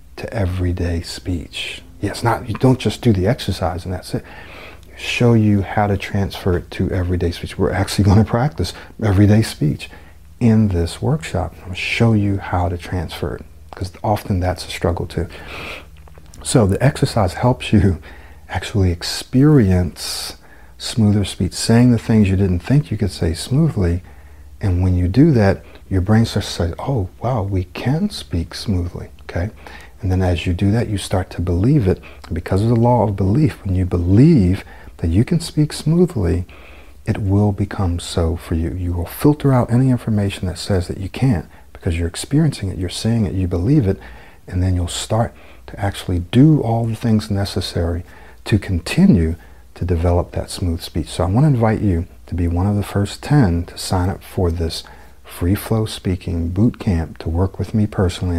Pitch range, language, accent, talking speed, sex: 85-110 Hz, English, American, 185 wpm, male